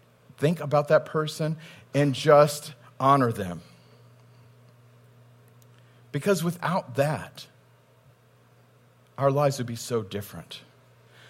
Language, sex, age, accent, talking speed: English, male, 40-59, American, 90 wpm